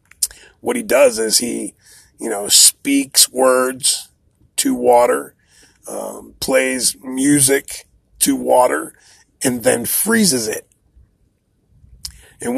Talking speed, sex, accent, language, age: 100 wpm, male, American, English, 40-59